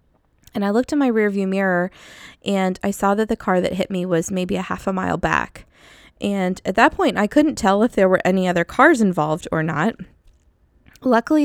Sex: female